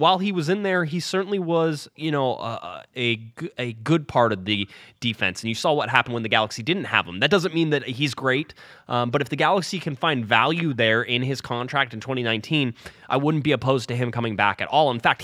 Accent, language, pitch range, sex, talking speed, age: American, English, 110-150 Hz, male, 240 wpm, 20-39